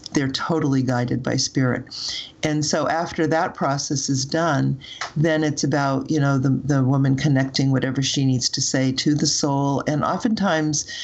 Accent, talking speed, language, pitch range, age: American, 170 wpm, English, 130-150 Hz, 50-69